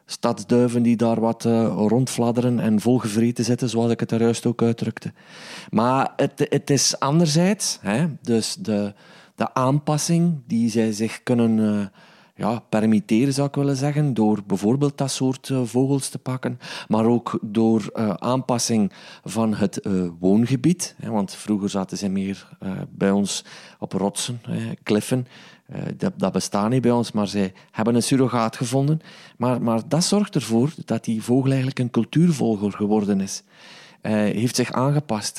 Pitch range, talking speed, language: 110-135 Hz, 165 wpm, Dutch